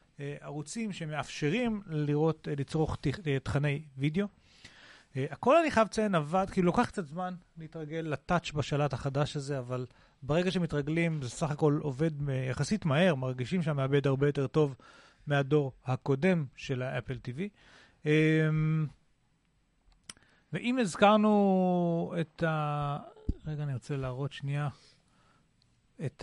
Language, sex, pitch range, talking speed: Hebrew, male, 140-165 Hz, 130 wpm